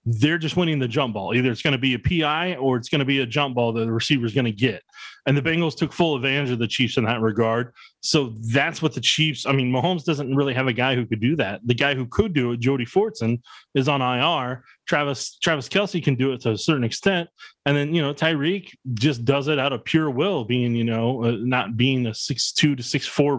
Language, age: English, 20-39